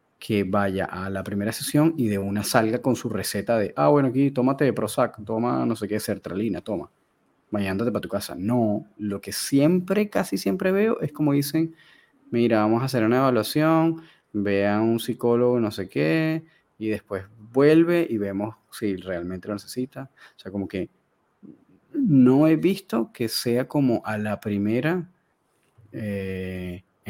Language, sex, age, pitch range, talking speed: Spanish, male, 30-49, 100-125 Hz, 165 wpm